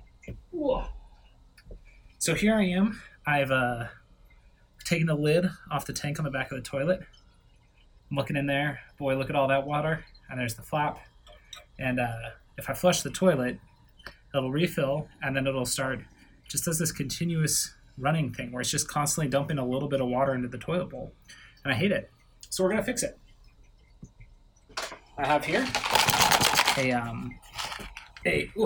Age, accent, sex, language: 20-39, American, male, English